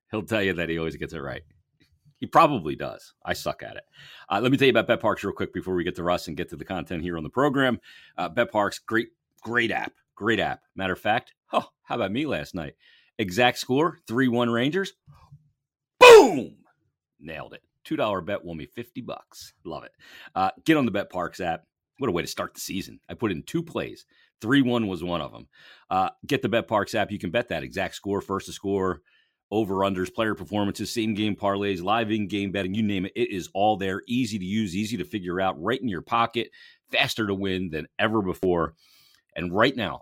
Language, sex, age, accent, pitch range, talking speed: English, male, 40-59, American, 85-115 Hz, 215 wpm